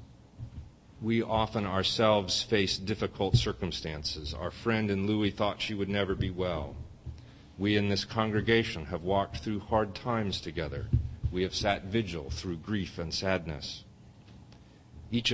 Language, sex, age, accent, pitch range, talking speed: English, male, 40-59, American, 95-120 Hz, 135 wpm